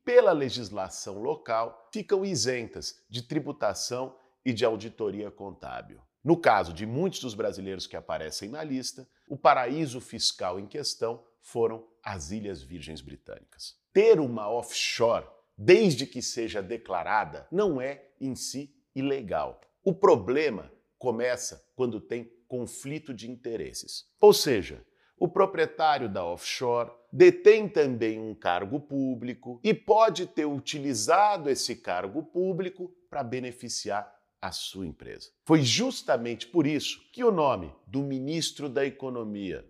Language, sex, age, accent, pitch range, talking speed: Portuguese, male, 50-69, Brazilian, 115-160 Hz, 130 wpm